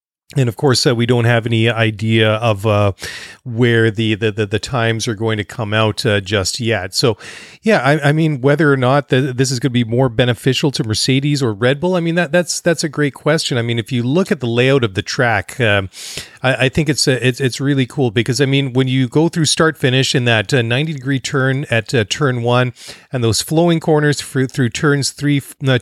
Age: 40-59